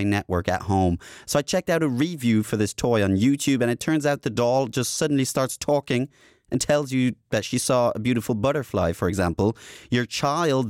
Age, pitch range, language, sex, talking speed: 30-49, 105-145 Hz, English, male, 210 wpm